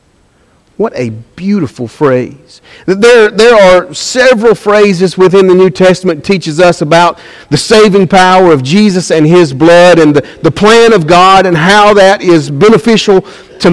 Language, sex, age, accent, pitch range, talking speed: English, male, 50-69, American, 145-200 Hz, 160 wpm